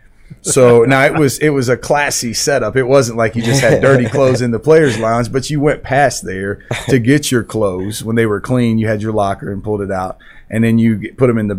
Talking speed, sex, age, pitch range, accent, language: 255 wpm, male, 30-49, 105-125 Hz, American, English